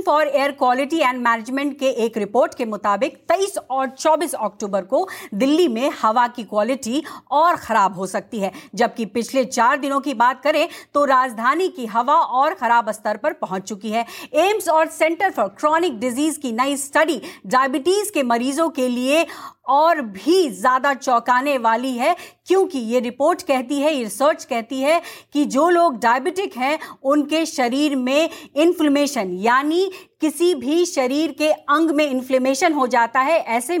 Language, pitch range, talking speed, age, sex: English, 255-325 Hz, 160 wpm, 50-69, female